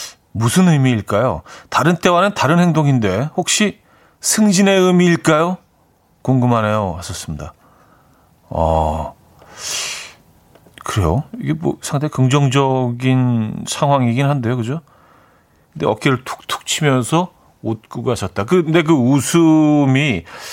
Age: 40-59